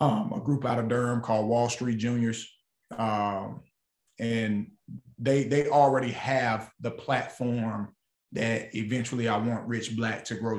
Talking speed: 145 wpm